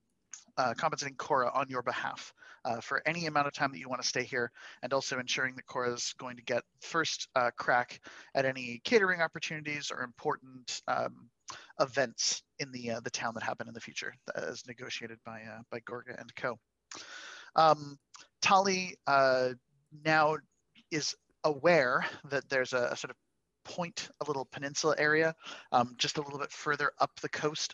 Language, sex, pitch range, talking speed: English, male, 120-150 Hz, 175 wpm